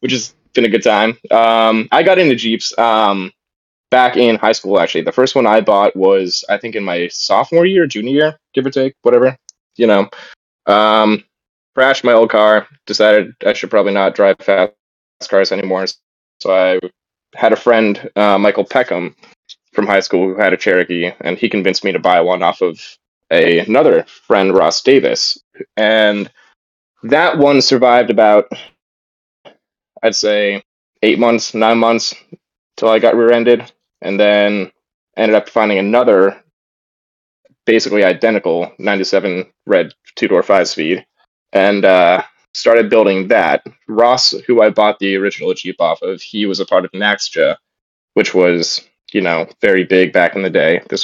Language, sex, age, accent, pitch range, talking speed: English, male, 20-39, American, 95-120 Hz, 160 wpm